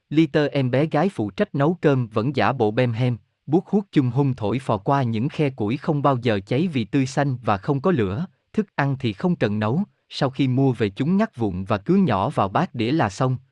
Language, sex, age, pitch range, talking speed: Vietnamese, male, 20-39, 110-155 Hz, 245 wpm